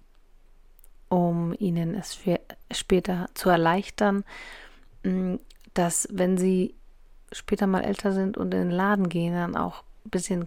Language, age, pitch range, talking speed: German, 30-49, 175-200 Hz, 125 wpm